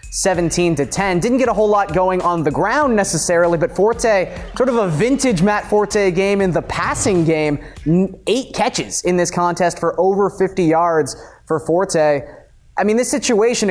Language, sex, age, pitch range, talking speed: English, male, 20-39, 160-200 Hz, 180 wpm